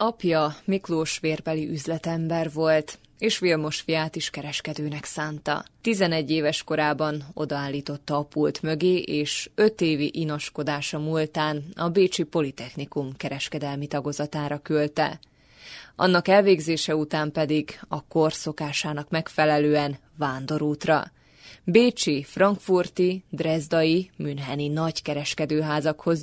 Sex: female